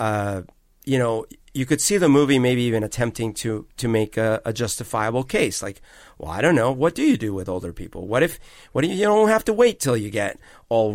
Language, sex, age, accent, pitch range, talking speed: English, male, 40-59, American, 110-135 Hz, 235 wpm